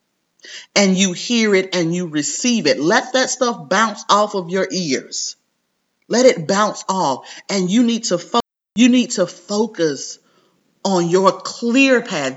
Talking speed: 160 wpm